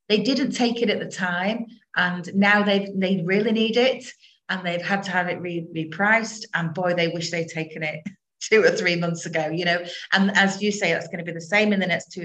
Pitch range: 170-205 Hz